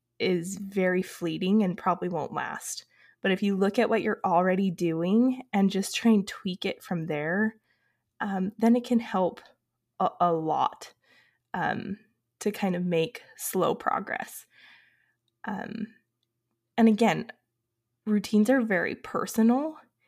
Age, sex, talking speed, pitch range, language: 20-39, female, 135 wpm, 175-220 Hz, English